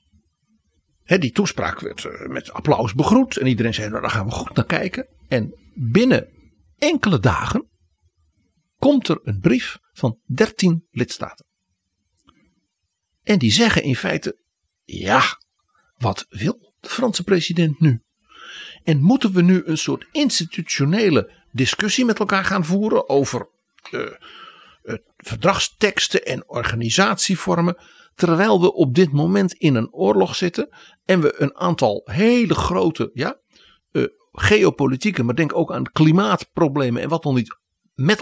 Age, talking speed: 60-79, 130 wpm